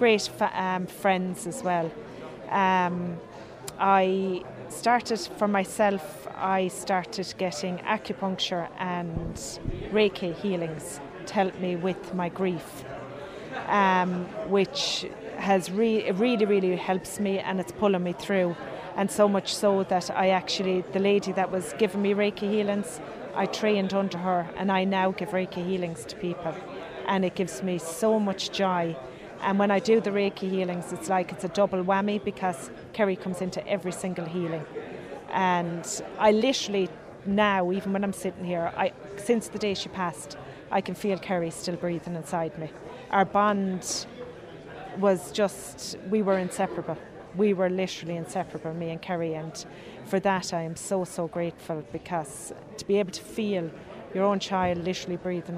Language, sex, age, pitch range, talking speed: English, female, 30-49, 175-195 Hz, 155 wpm